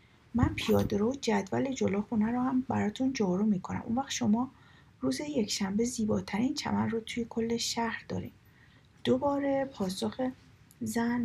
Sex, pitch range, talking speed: female, 200-250 Hz, 135 wpm